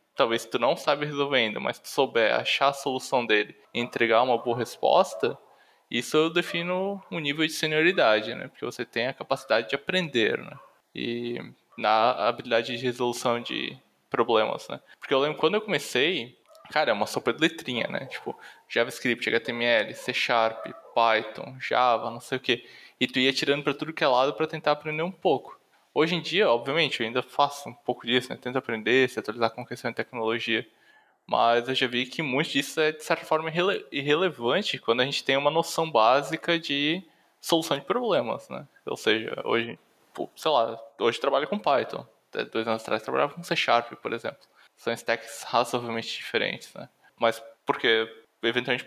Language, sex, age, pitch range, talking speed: Portuguese, male, 20-39, 120-155 Hz, 185 wpm